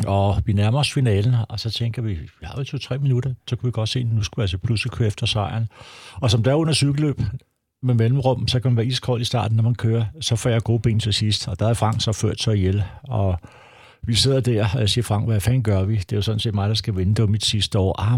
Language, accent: Danish, native